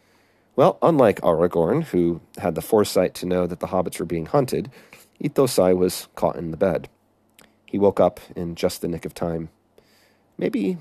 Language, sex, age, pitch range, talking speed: English, male, 30-49, 85-110 Hz, 170 wpm